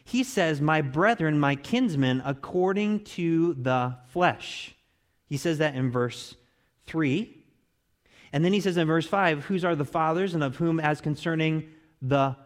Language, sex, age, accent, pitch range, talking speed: English, male, 30-49, American, 135-185 Hz, 160 wpm